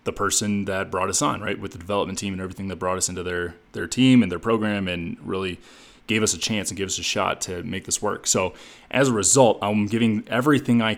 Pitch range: 95-110 Hz